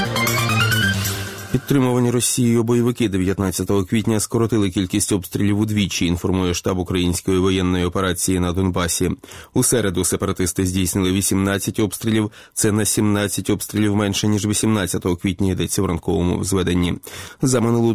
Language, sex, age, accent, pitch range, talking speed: Ukrainian, male, 20-39, native, 95-110 Hz, 120 wpm